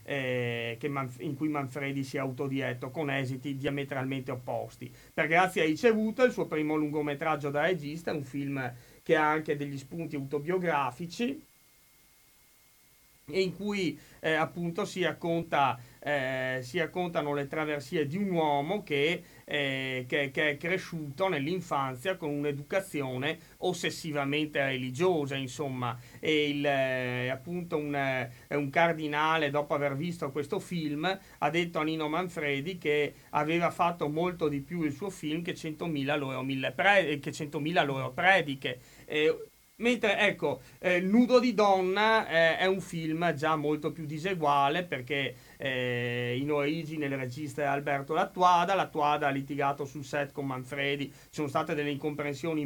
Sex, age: male, 40-59